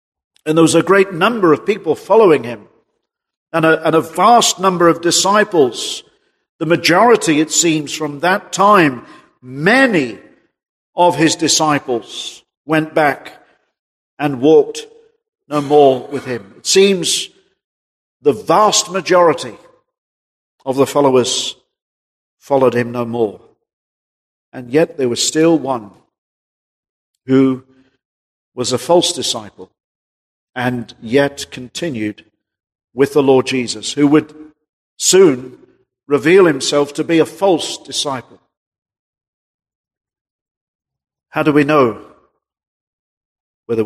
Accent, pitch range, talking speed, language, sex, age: British, 130-175 Hz, 110 wpm, English, male, 50-69